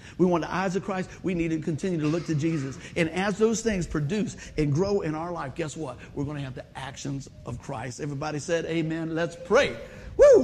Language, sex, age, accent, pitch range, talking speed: English, male, 50-69, American, 155-235 Hz, 230 wpm